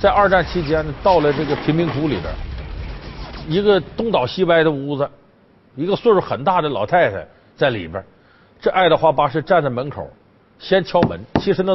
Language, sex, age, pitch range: Chinese, male, 50-69, 140-215 Hz